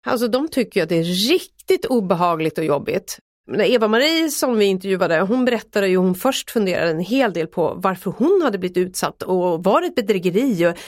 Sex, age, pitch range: female, 30-49, 185-255 Hz